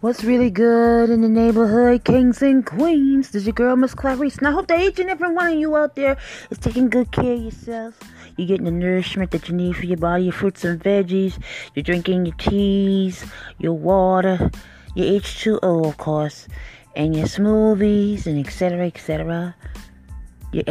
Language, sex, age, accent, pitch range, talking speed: English, female, 30-49, American, 165-245 Hz, 185 wpm